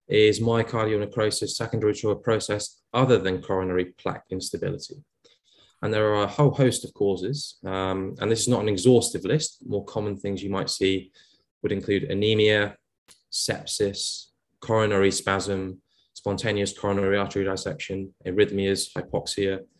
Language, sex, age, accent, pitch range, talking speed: English, male, 20-39, British, 95-115 Hz, 140 wpm